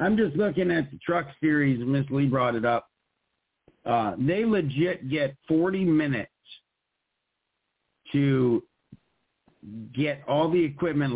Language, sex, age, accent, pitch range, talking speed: English, male, 50-69, American, 105-140 Hz, 125 wpm